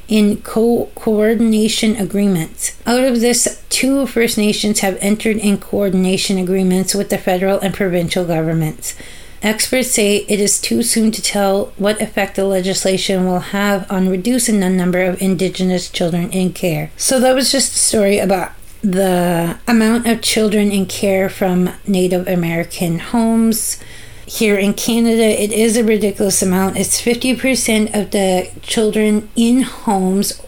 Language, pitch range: French, 190-225 Hz